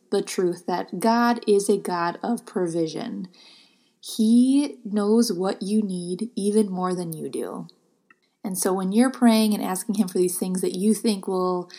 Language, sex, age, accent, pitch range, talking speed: English, female, 20-39, American, 170-210 Hz, 175 wpm